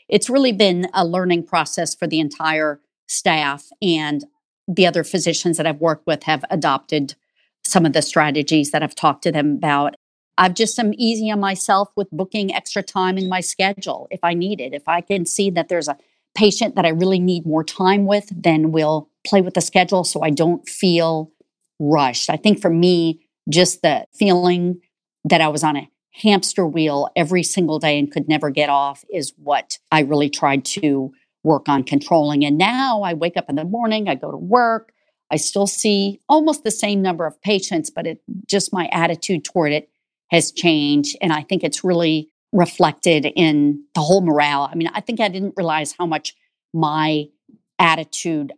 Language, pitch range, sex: English, 155-195 Hz, female